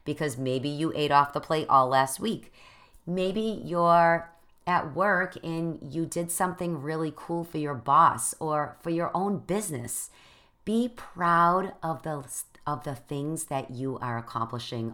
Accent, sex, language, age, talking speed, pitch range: American, female, English, 40-59, 155 wpm, 125-170 Hz